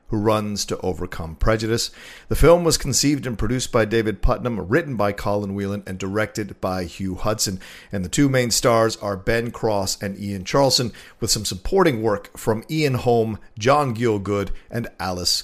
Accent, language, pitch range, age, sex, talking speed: American, English, 95-115 Hz, 50-69, male, 175 wpm